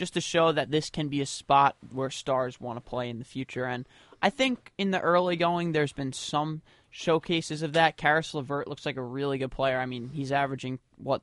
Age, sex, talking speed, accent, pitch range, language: 20-39, male, 225 wpm, American, 130-150 Hz, English